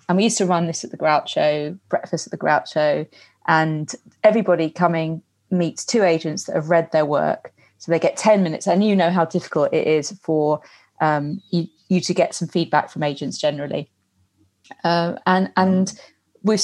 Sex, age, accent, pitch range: female, 30-49, British, 155-185 Hz